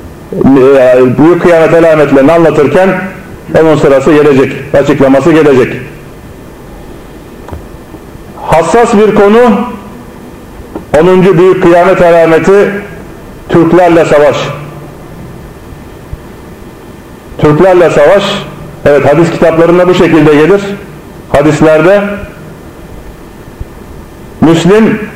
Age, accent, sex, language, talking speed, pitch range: 40-59, native, male, Turkish, 65 wpm, 160-195 Hz